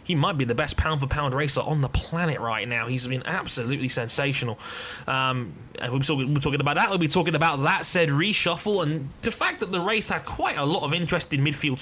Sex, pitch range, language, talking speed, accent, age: male, 135-170 Hz, English, 215 wpm, British, 20-39